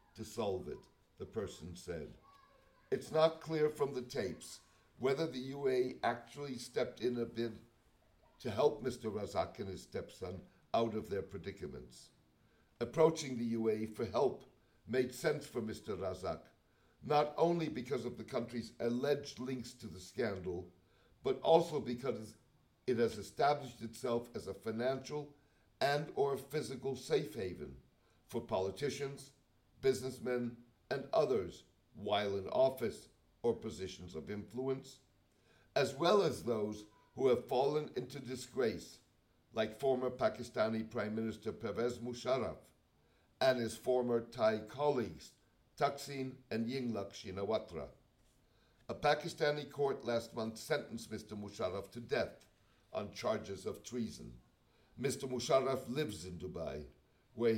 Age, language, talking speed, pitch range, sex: 60-79, English, 130 wpm, 110-135 Hz, male